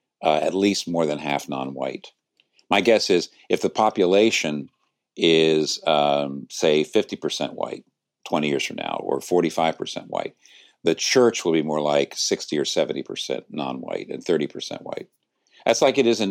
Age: 50-69